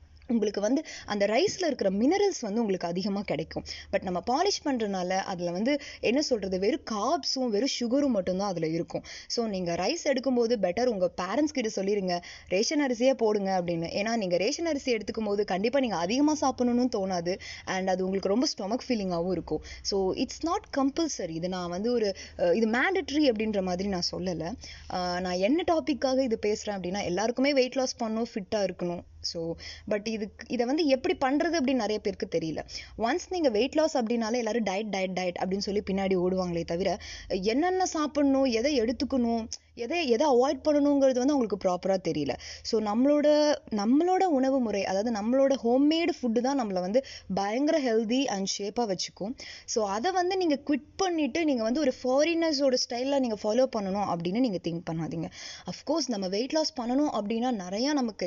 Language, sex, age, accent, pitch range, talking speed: Tamil, female, 20-39, native, 195-275 Hz, 165 wpm